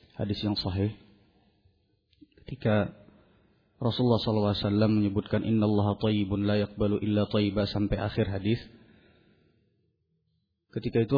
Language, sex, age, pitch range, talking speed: Malay, male, 30-49, 100-115 Hz, 100 wpm